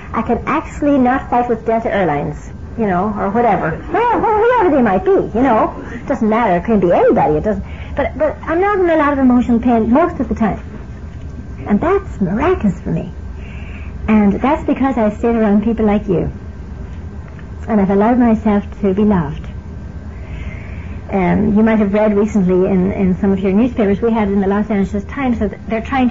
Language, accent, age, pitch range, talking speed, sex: English, American, 60-79, 195-240 Hz, 200 wpm, female